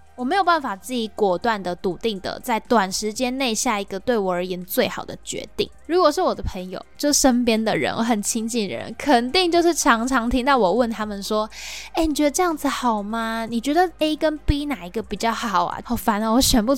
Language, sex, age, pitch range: Chinese, female, 10-29, 200-270 Hz